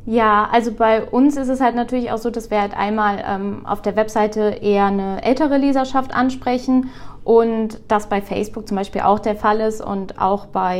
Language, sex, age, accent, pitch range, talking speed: German, female, 20-39, German, 205-235 Hz, 200 wpm